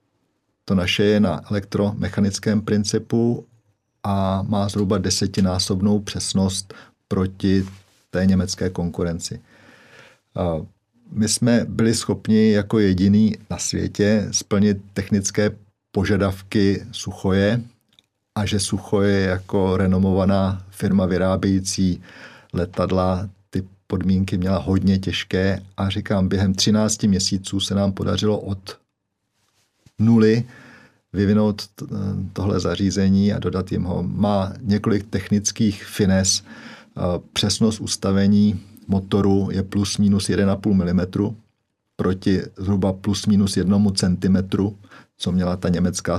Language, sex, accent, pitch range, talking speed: Czech, male, native, 95-105 Hz, 105 wpm